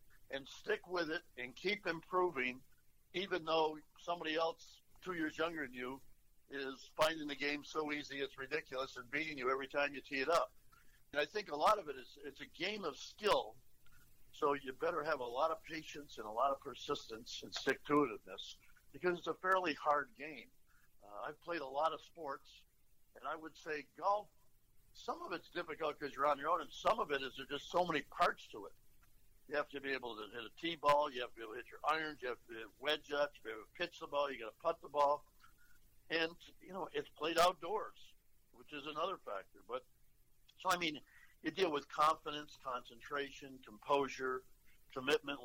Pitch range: 135-165 Hz